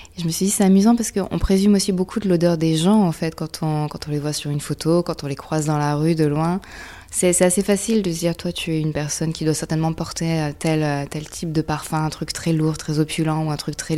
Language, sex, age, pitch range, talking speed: French, female, 20-39, 150-175 Hz, 285 wpm